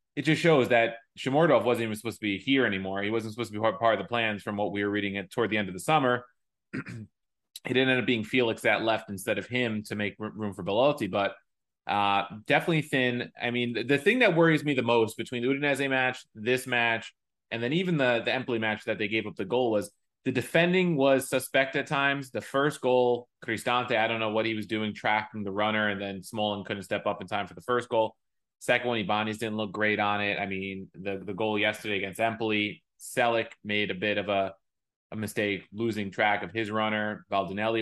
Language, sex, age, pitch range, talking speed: English, male, 20-39, 105-125 Hz, 225 wpm